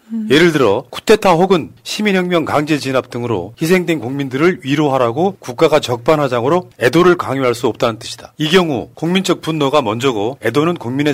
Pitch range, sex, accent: 130-165 Hz, male, Korean